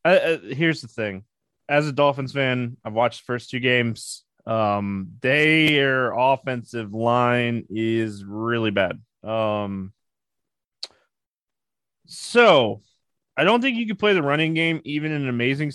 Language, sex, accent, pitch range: English, male, American, 115-145 Hz